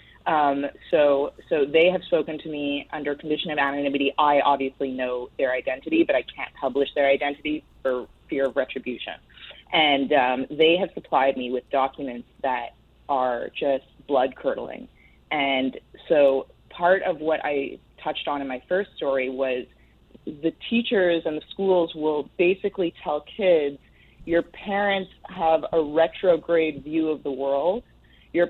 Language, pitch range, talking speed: English, 140-180 Hz, 150 wpm